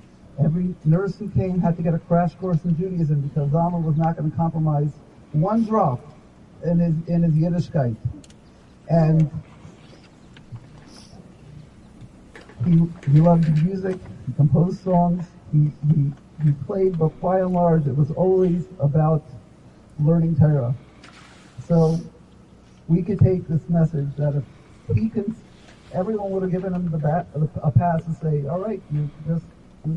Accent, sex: American, male